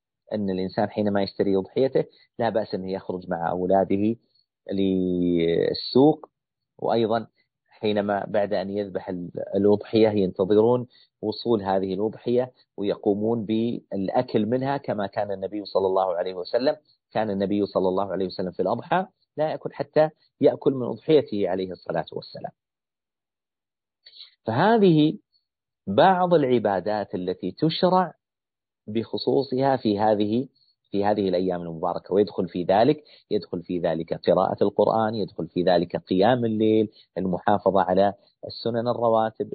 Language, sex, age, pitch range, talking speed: Arabic, male, 40-59, 95-130 Hz, 120 wpm